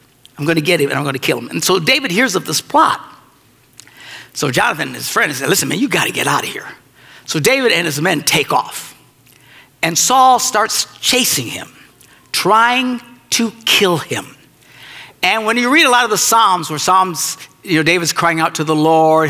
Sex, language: male, English